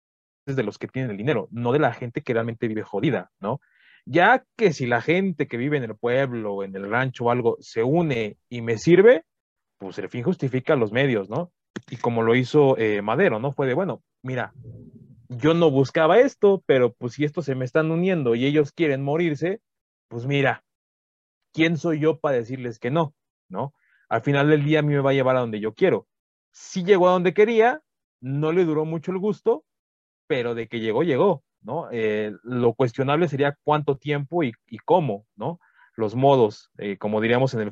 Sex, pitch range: male, 115-155 Hz